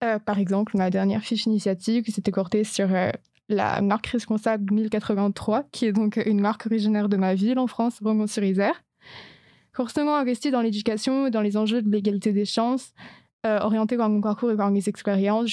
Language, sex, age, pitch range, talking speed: French, female, 20-39, 205-230 Hz, 195 wpm